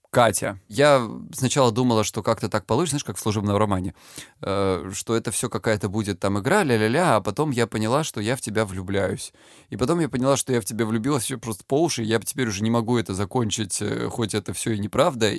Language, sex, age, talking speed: Russian, male, 20-39, 215 wpm